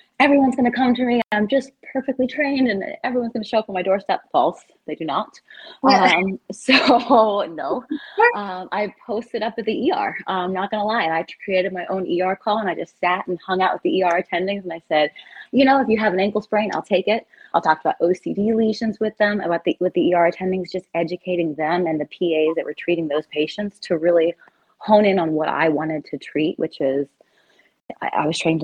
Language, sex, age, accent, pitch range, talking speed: English, female, 20-39, American, 165-215 Hz, 230 wpm